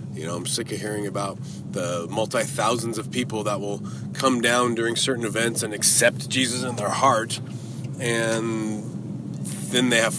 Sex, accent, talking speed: male, American, 165 wpm